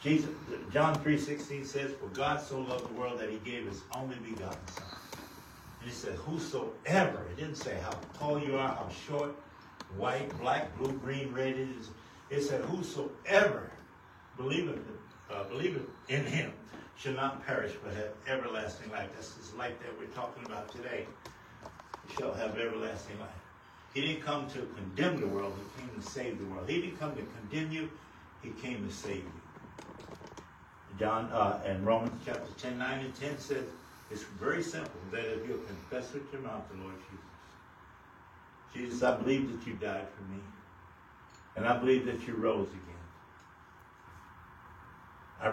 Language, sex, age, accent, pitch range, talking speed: English, male, 70-89, American, 100-135 Hz, 165 wpm